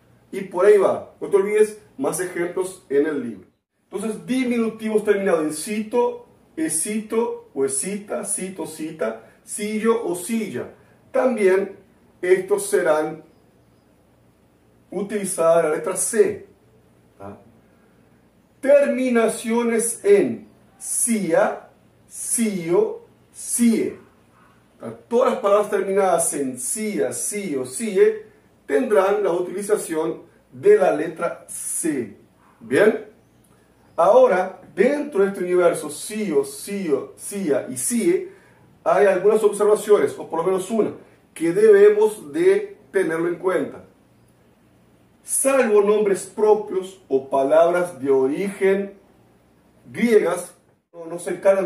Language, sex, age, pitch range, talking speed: Spanish, male, 40-59, 170-235 Hz, 105 wpm